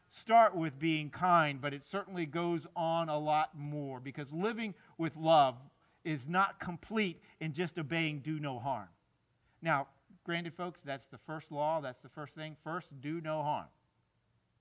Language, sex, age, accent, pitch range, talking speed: English, male, 50-69, American, 135-180 Hz, 165 wpm